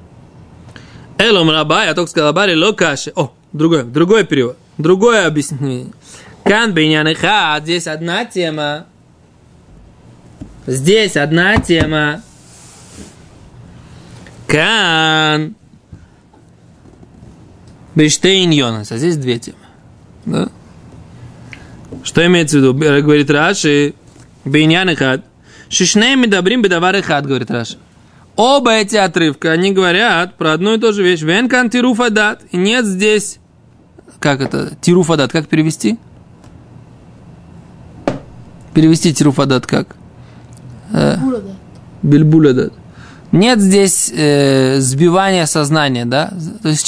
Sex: male